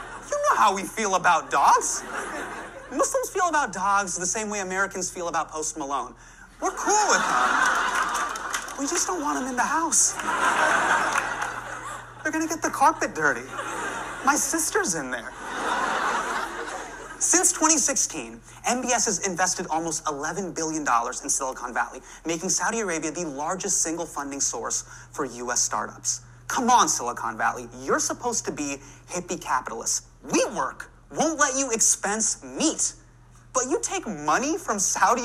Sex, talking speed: male, 150 wpm